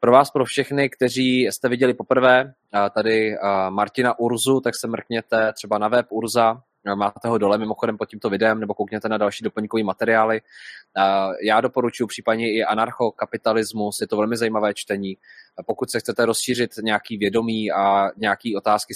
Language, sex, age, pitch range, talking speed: Czech, male, 20-39, 105-120 Hz, 160 wpm